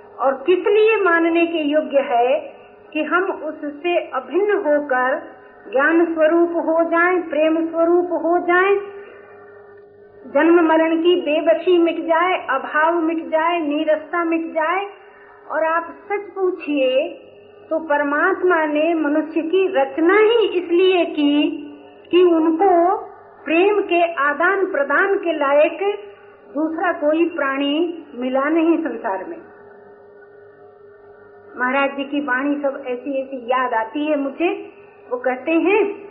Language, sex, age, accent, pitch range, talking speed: Hindi, female, 50-69, native, 285-345 Hz, 120 wpm